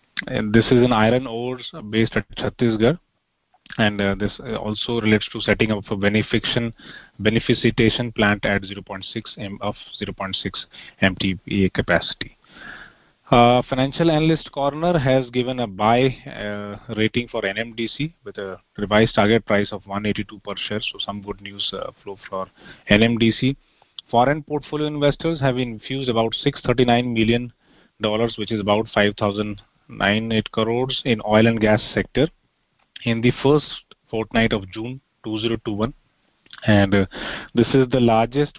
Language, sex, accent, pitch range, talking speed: English, male, Indian, 105-125 Hz, 145 wpm